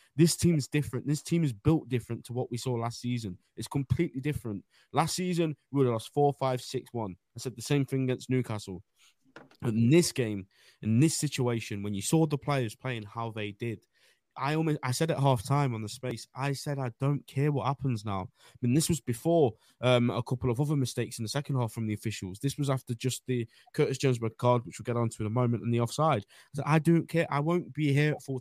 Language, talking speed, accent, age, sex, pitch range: English, 245 wpm, British, 20-39, male, 110-135 Hz